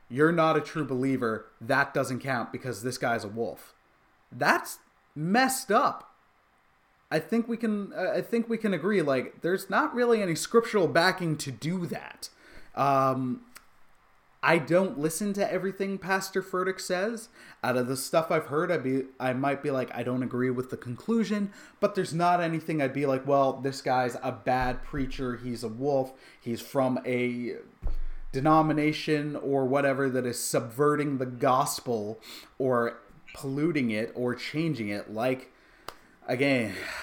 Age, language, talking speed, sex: 20-39, English, 155 wpm, male